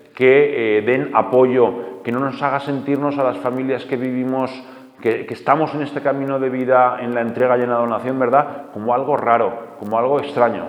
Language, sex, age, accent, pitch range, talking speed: Spanish, male, 30-49, Spanish, 115-145 Hz, 200 wpm